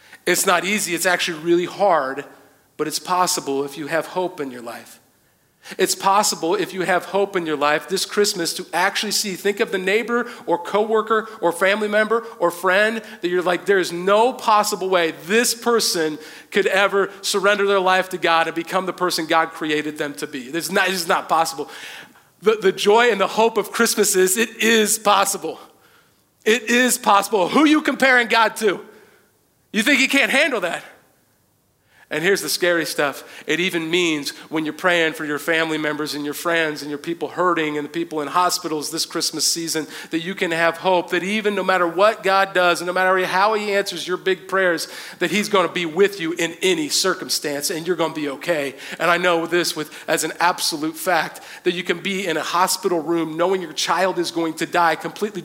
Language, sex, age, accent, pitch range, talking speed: English, male, 40-59, American, 160-200 Hz, 205 wpm